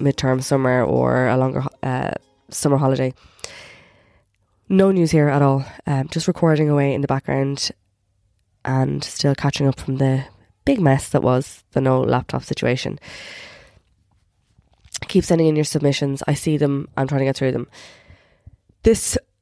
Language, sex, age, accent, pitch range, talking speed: English, female, 20-39, Irish, 125-150 Hz, 150 wpm